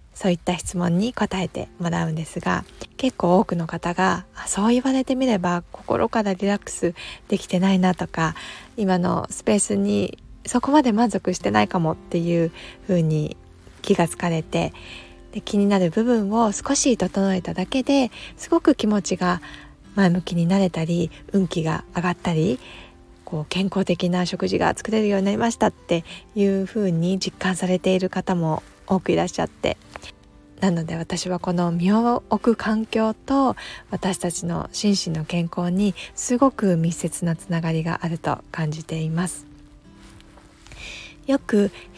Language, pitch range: Japanese, 170-205 Hz